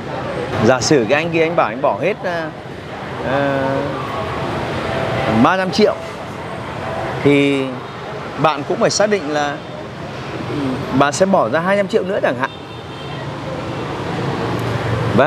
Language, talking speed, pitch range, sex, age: Vietnamese, 120 wpm, 140-180 Hz, male, 30-49